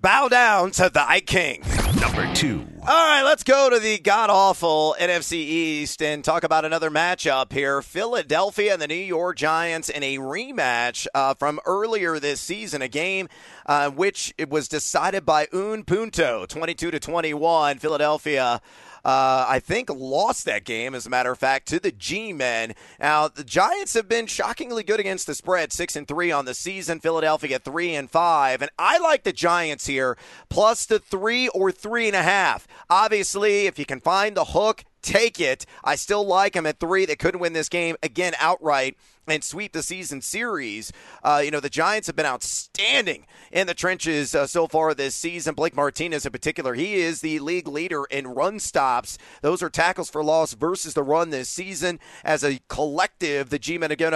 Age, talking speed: 30-49, 185 wpm